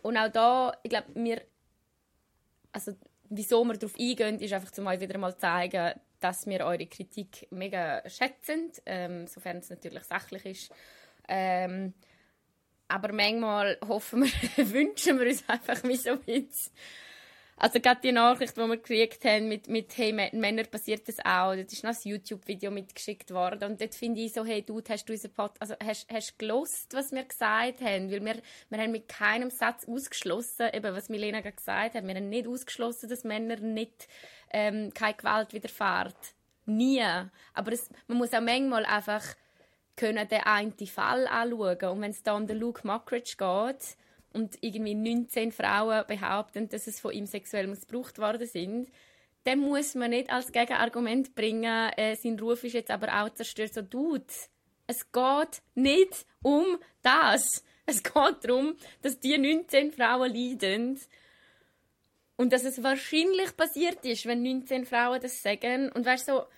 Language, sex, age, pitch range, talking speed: German, female, 20-39, 210-250 Hz, 170 wpm